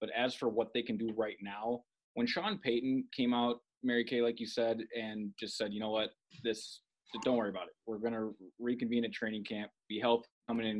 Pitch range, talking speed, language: 110-130 Hz, 230 wpm, English